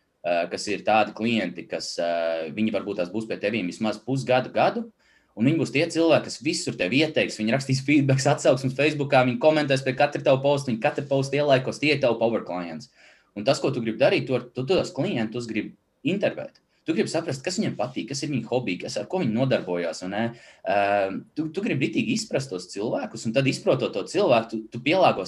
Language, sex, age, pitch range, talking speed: English, male, 20-39, 110-145 Hz, 205 wpm